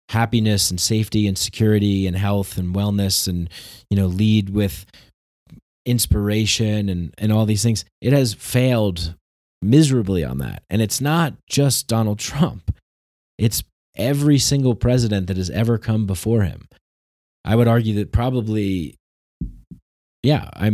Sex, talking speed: male, 140 wpm